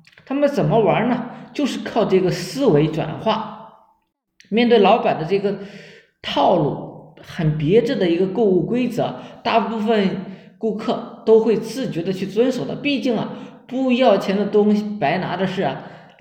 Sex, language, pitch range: male, Chinese, 170-230 Hz